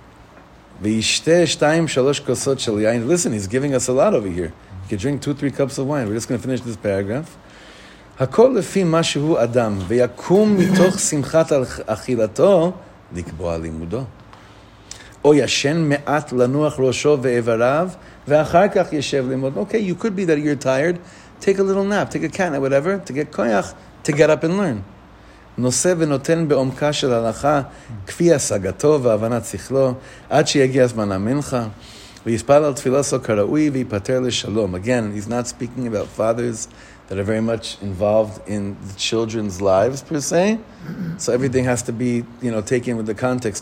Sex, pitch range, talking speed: male, 110-150 Hz, 90 wpm